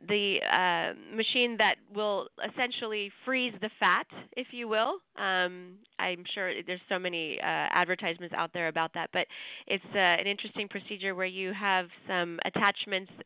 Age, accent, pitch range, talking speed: 20-39, American, 185-225 Hz, 160 wpm